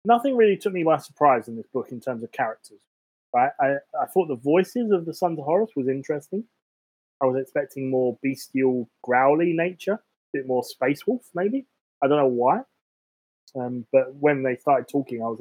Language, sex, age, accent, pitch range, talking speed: English, male, 20-39, British, 115-150 Hz, 200 wpm